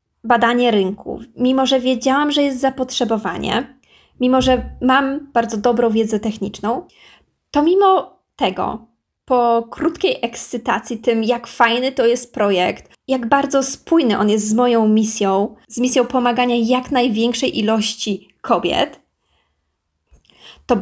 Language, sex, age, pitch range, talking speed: Polish, female, 20-39, 220-260 Hz, 125 wpm